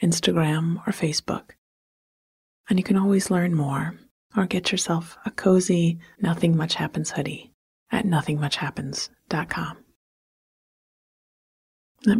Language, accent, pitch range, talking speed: English, American, 165-200 Hz, 105 wpm